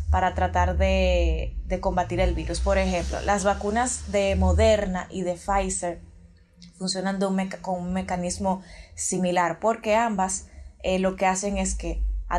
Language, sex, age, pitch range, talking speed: Spanish, female, 20-39, 180-215 Hz, 145 wpm